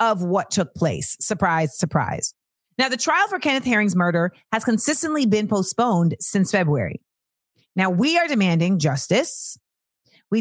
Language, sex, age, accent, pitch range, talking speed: English, female, 30-49, American, 185-250 Hz, 145 wpm